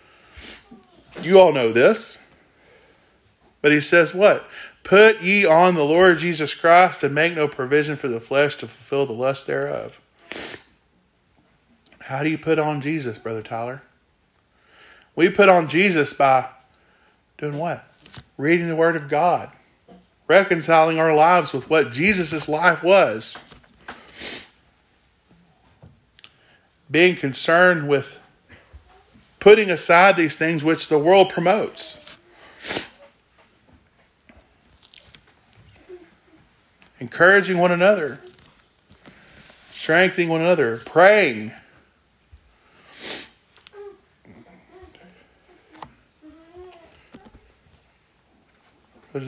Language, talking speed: English, 90 wpm